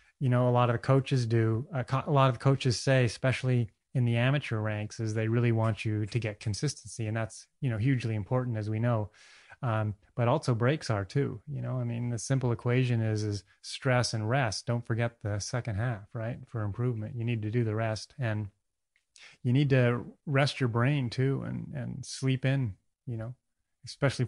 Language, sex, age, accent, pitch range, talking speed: English, male, 30-49, American, 110-130 Hz, 210 wpm